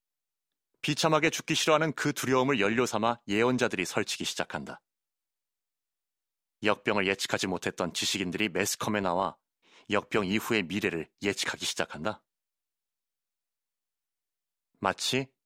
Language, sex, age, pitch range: Korean, male, 30-49, 100-140 Hz